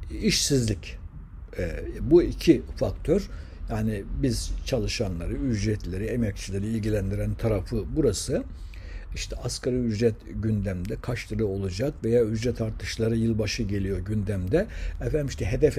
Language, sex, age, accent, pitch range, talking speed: Turkish, male, 60-79, native, 95-125 Hz, 110 wpm